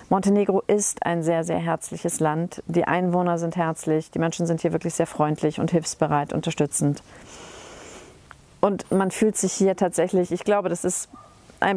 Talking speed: 165 wpm